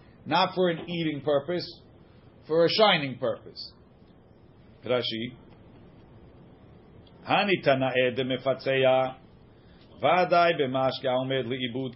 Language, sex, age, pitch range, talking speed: English, male, 50-69, 135-180 Hz, 85 wpm